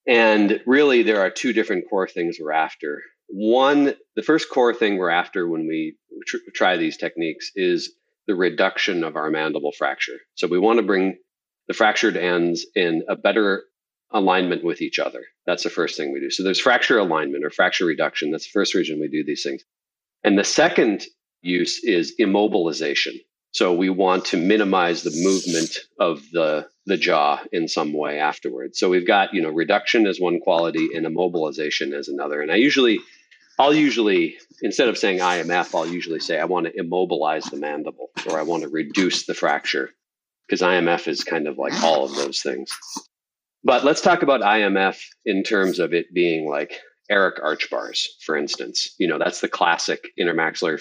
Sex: male